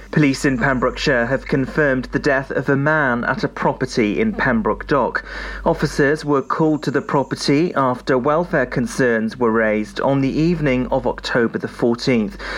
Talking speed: 160 wpm